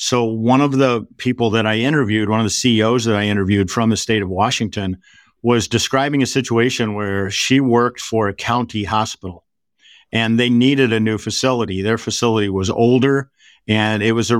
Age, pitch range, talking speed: 50-69, 105-125 Hz, 190 wpm